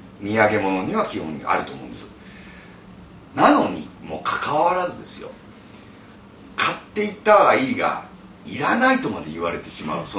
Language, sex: Japanese, male